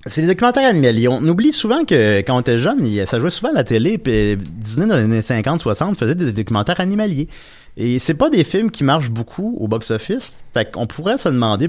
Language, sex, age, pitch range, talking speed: French, male, 30-49, 105-145 Hz, 220 wpm